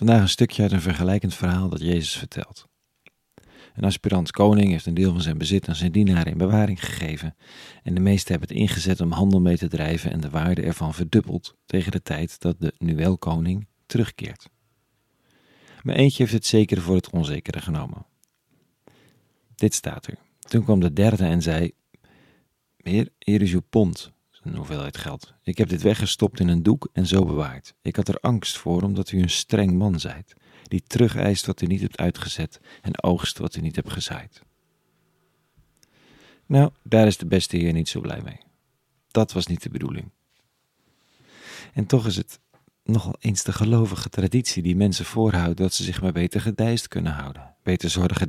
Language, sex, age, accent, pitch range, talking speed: Dutch, male, 40-59, Dutch, 85-105 Hz, 185 wpm